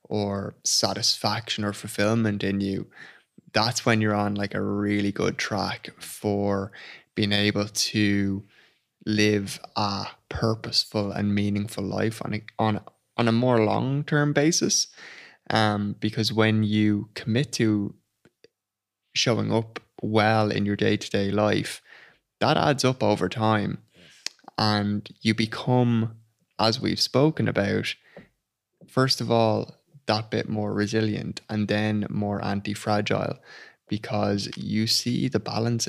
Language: English